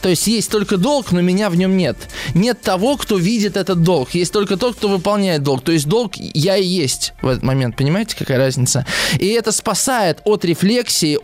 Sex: male